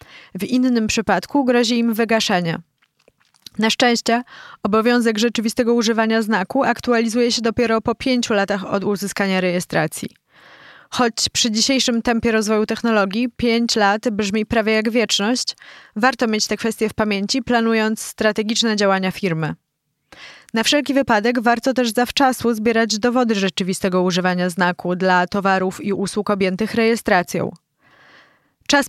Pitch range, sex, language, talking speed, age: 195-235 Hz, female, Polish, 125 wpm, 20-39